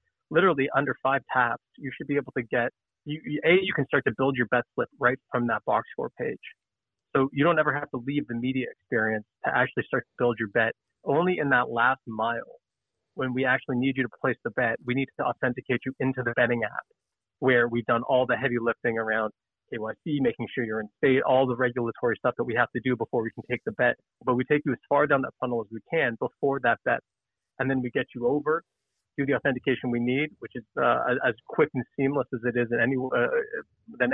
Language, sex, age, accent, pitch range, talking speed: English, male, 30-49, American, 120-135 Hz, 235 wpm